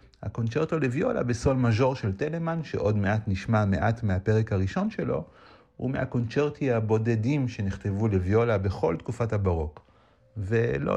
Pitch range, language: 100-130 Hz, Hebrew